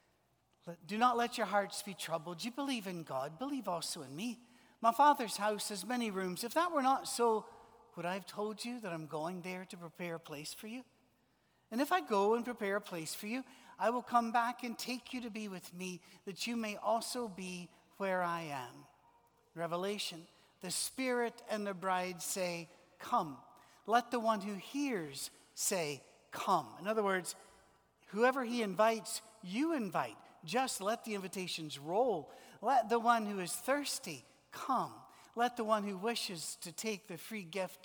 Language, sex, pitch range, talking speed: English, male, 170-230 Hz, 180 wpm